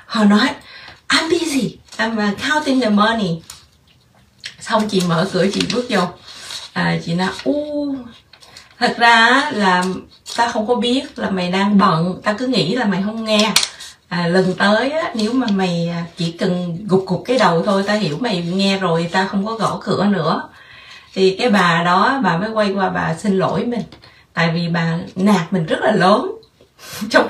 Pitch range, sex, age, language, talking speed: 180-230 Hz, female, 20-39, Vietnamese, 175 wpm